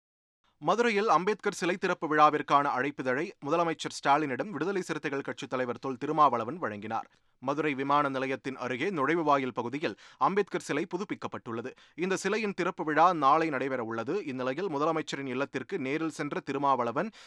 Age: 30-49